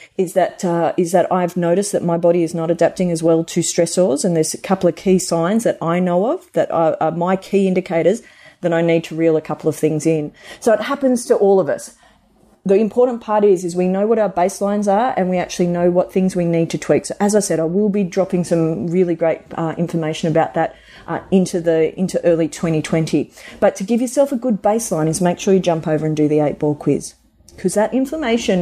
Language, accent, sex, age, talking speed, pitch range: English, Australian, female, 40-59, 240 wpm, 165-210 Hz